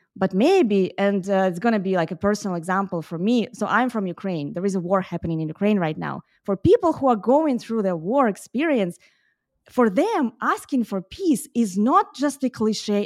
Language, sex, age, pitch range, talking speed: English, female, 20-39, 190-255 Hz, 210 wpm